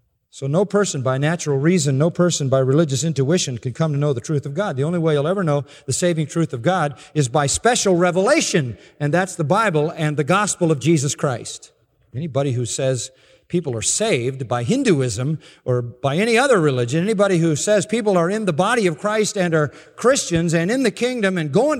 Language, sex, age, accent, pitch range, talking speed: English, male, 50-69, American, 125-165 Hz, 210 wpm